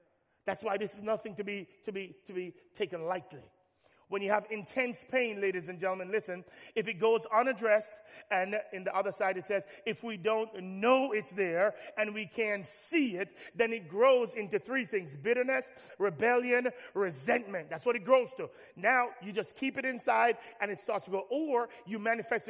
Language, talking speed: English, 190 wpm